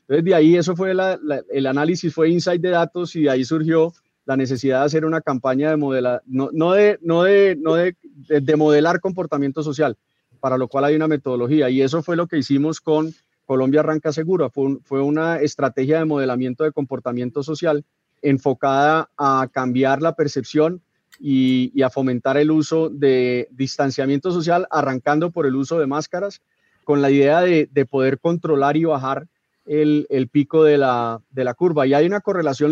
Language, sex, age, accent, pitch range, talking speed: Spanish, male, 30-49, Colombian, 135-165 Hz, 170 wpm